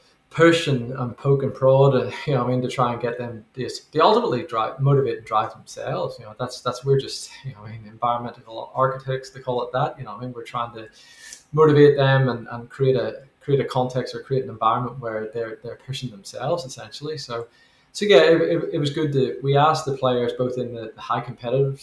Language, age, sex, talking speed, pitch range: English, 20-39, male, 235 wpm, 120-135 Hz